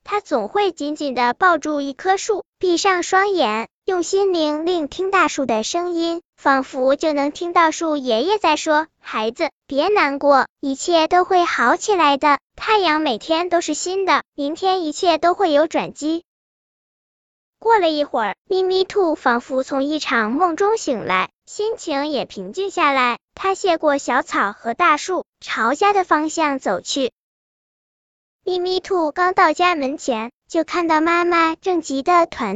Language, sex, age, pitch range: Chinese, male, 10-29, 280-370 Hz